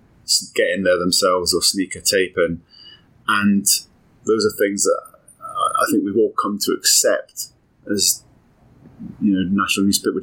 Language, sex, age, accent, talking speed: English, male, 30-49, British, 155 wpm